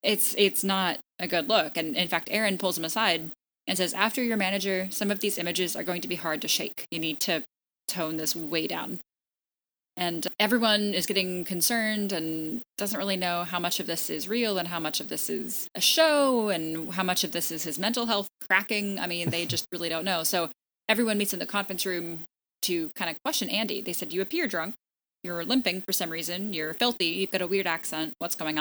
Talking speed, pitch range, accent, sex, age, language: 225 wpm, 170-215 Hz, American, female, 10-29, English